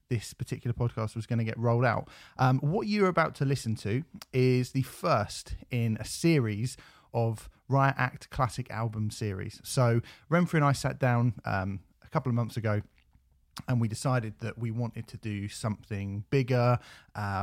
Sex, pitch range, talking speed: male, 105-125 Hz, 175 wpm